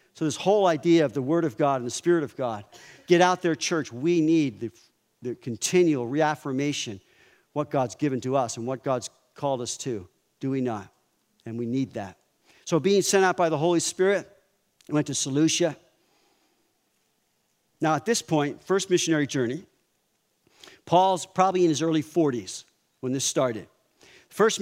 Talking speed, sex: 170 wpm, male